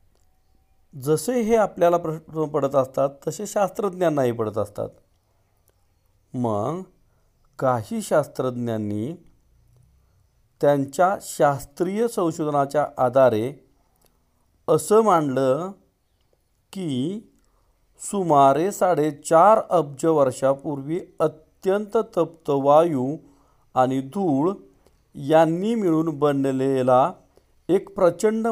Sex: male